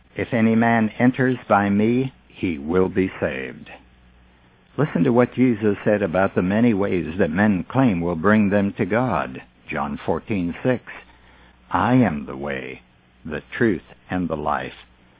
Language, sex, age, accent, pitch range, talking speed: English, male, 60-79, American, 85-125 Hz, 150 wpm